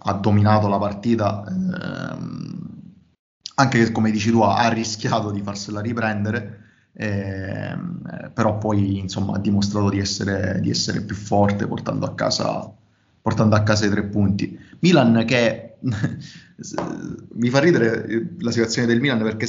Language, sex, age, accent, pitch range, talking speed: Italian, male, 30-49, native, 105-125 Hz, 145 wpm